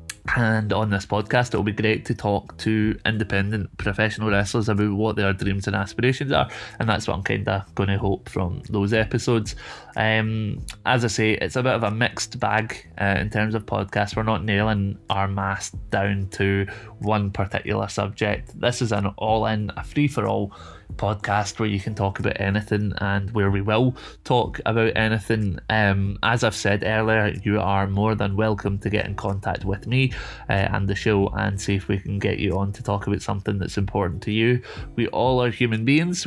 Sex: male